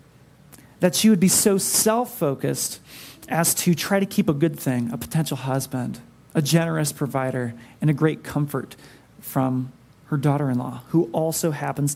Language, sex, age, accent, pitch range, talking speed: English, male, 30-49, American, 140-180 Hz, 150 wpm